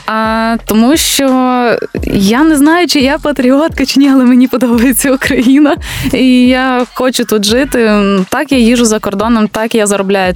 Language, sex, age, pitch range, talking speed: Ukrainian, female, 20-39, 190-235 Hz, 160 wpm